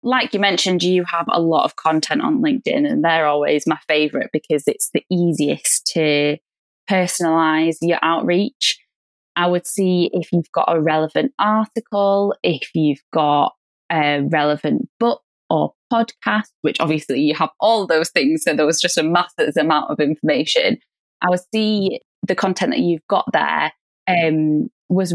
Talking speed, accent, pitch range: 160 wpm, British, 160-200 Hz